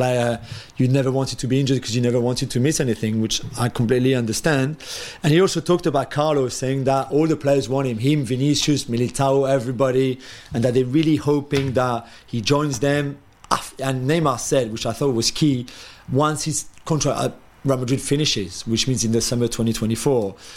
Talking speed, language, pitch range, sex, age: 185 wpm, English, 120-145 Hz, male, 40-59